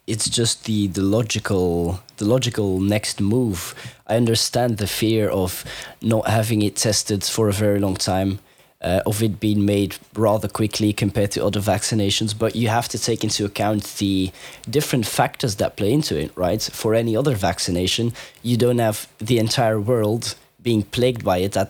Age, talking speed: 20-39, 170 wpm